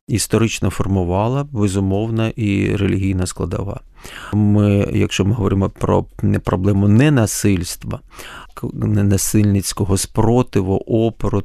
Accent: native